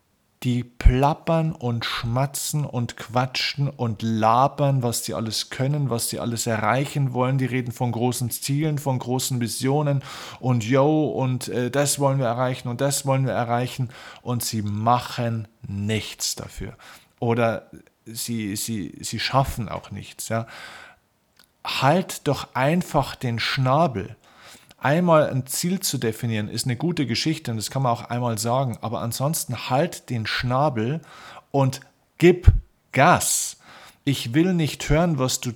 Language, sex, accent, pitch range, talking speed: German, male, German, 115-140 Hz, 140 wpm